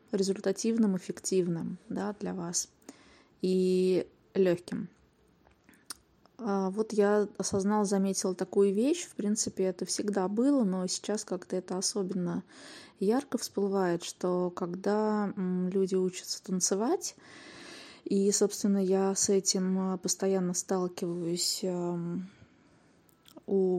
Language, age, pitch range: Russian, 20-39, 185-210 Hz